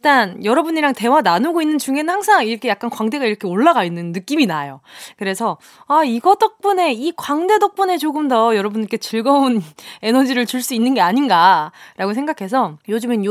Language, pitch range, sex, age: Korean, 200-320 Hz, female, 20-39